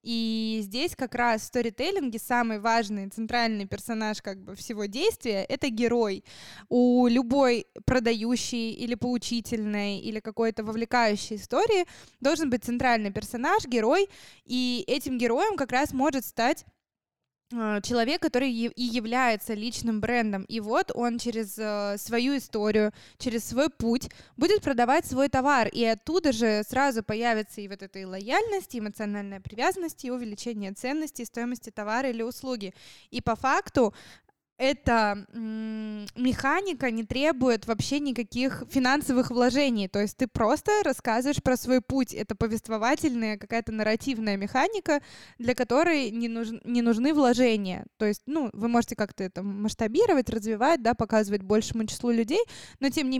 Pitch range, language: 220-270 Hz, Russian